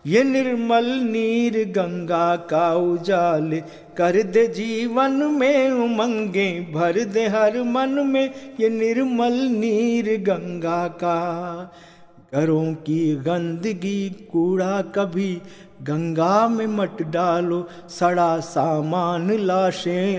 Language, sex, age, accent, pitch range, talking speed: Hindi, male, 50-69, native, 170-250 Hz, 90 wpm